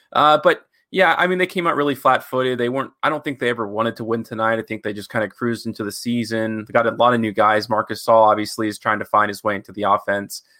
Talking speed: 290 wpm